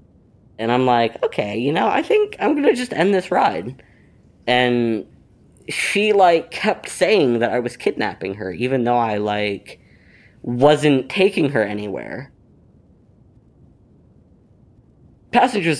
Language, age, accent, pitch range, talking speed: English, 30-49, American, 105-125 Hz, 130 wpm